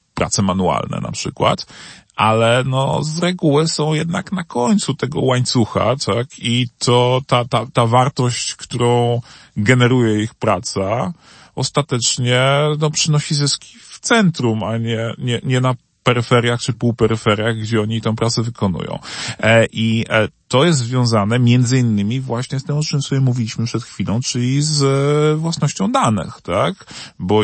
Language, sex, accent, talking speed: Polish, male, native, 145 wpm